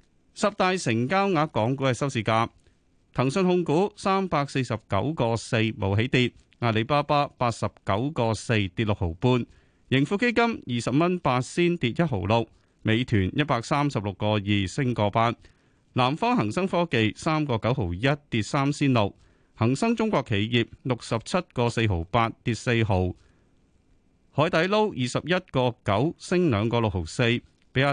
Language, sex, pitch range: Chinese, male, 105-150 Hz